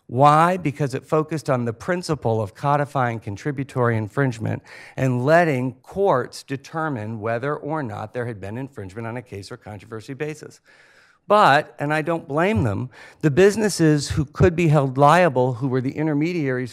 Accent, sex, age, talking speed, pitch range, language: American, male, 50-69, 160 wpm, 115-150 Hz, English